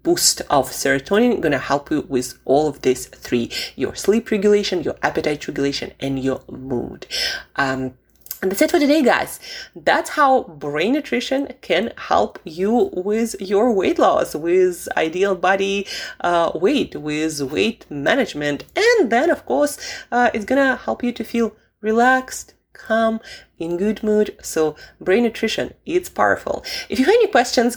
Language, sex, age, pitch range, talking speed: English, female, 20-39, 150-245 Hz, 160 wpm